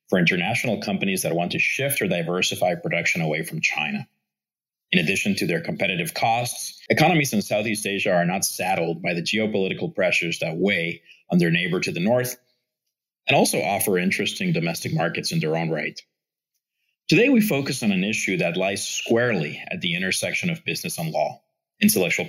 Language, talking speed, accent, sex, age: English, 175 wpm, American, male, 40-59